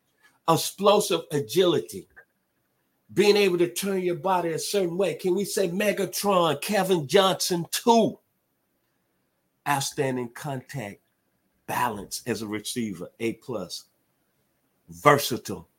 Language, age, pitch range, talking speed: English, 50-69, 100-130 Hz, 105 wpm